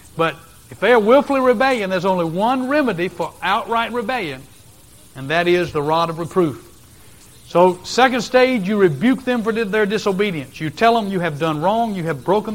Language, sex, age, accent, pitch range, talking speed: English, male, 60-79, American, 150-220 Hz, 185 wpm